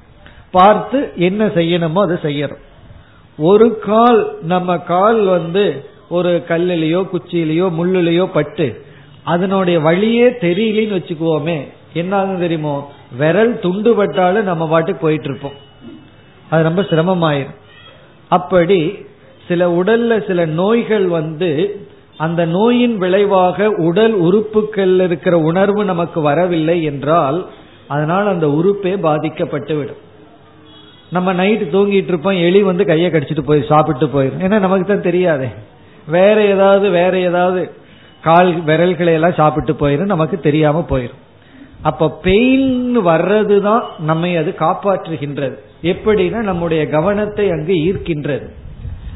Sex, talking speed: male, 75 wpm